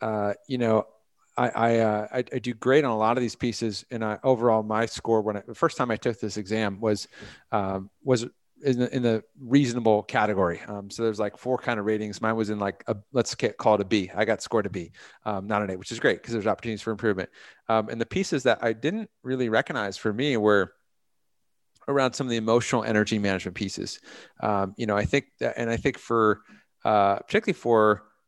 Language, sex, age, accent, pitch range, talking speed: English, male, 30-49, American, 105-115 Hz, 225 wpm